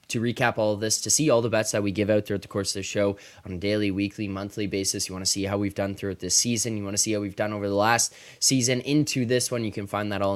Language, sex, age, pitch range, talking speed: English, male, 20-39, 100-120 Hz, 320 wpm